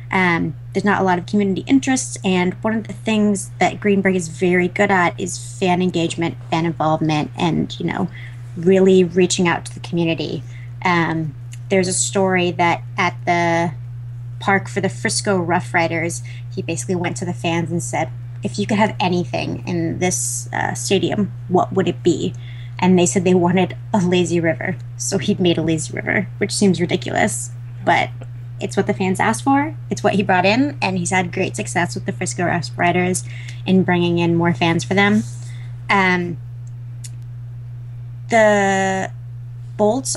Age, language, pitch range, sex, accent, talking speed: 20-39, English, 120-185 Hz, female, American, 170 wpm